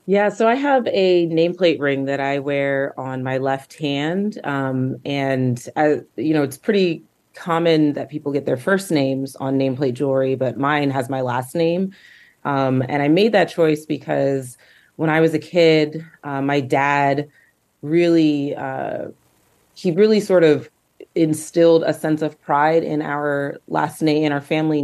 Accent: American